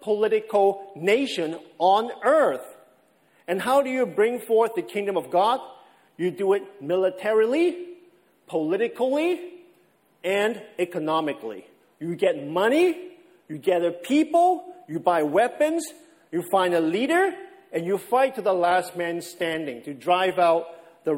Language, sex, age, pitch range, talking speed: English, male, 50-69, 170-255 Hz, 130 wpm